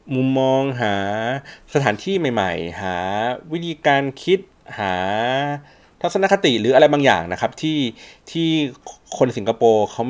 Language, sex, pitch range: Thai, male, 105-140 Hz